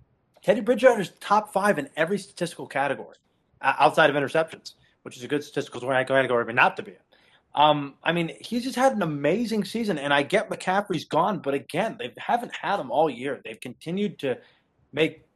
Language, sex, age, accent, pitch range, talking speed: English, male, 30-49, American, 140-180 Hz, 190 wpm